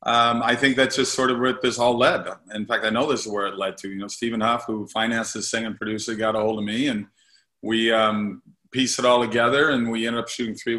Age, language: 40-59, English